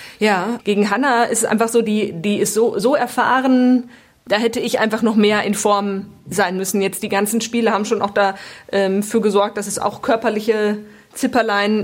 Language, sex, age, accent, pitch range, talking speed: German, female, 20-39, German, 195-225 Hz, 195 wpm